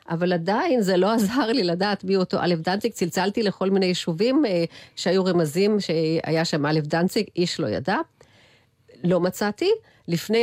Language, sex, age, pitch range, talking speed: Hebrew, female, 40-59, 170-215 Hz, 160 wpm